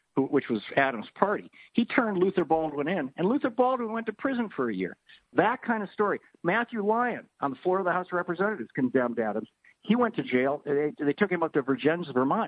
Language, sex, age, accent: English, male, 50-69, American